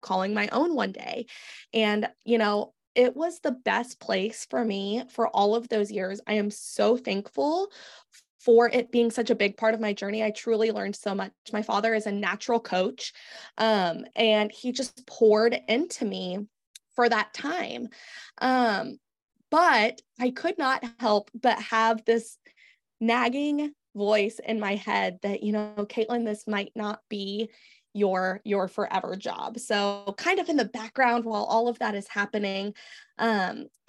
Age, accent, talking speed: 20-39, American, 165 wpm